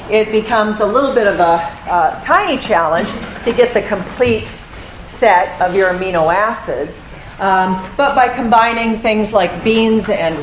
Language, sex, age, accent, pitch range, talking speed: English, female, 40-59, American, 190-240 Hz, 155 wpm